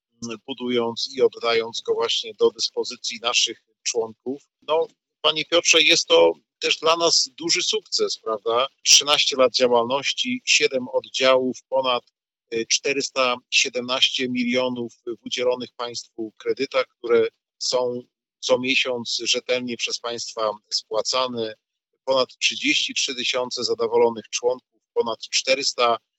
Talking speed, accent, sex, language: 110 wpm, native, male, Polish